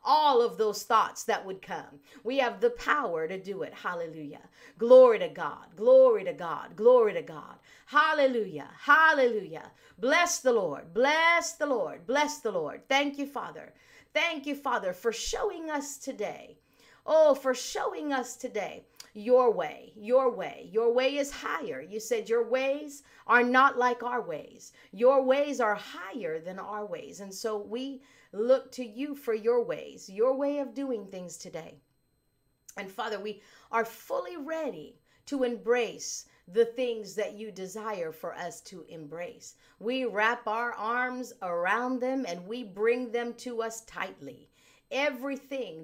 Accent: American